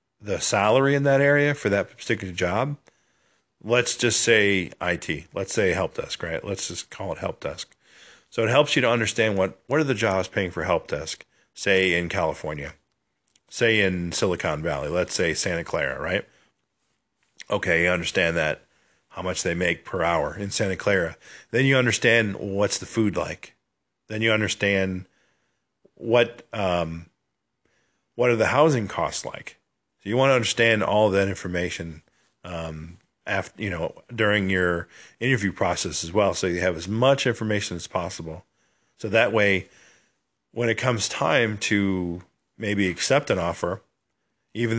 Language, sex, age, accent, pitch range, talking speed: English, male, 40-59, American, 90-115 Hz, 160 wpm